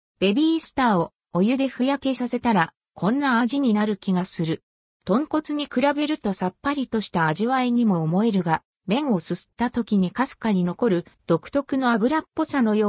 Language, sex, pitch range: Japanese, female, 175-260 Hz